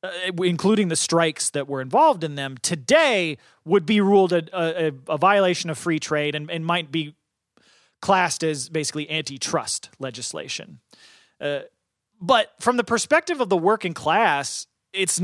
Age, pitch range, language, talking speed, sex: 30-49, 150-205 Hz, English, 155 wpm, male